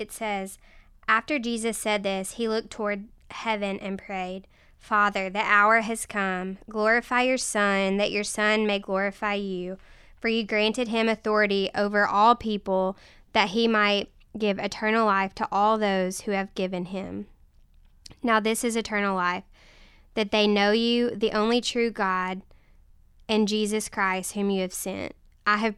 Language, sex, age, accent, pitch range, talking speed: English, female, 10-29, American, 195-220 Hz, 160 wpm